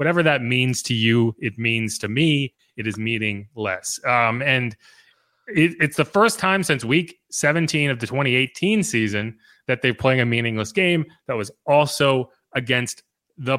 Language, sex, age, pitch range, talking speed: English, male, 30-49, 115-150 Hz, 165 wpm